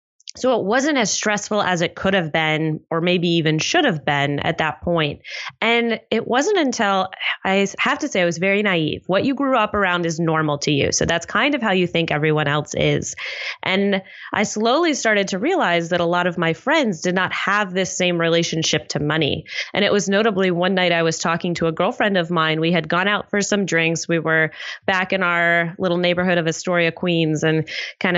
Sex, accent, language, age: female, American, English, 20-39